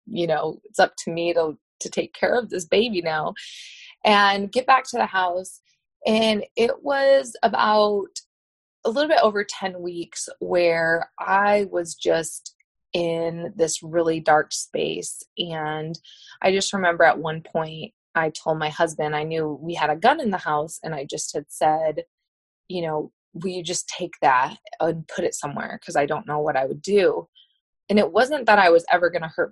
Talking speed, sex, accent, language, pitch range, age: 190 wpm, female, American, English, 160-205 Hz, 20-39